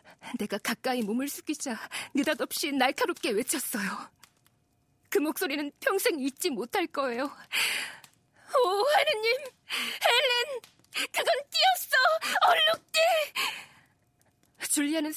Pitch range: 260-365 Hz